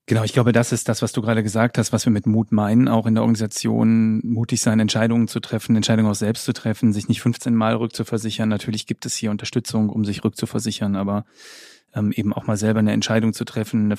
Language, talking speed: German, 230 wpm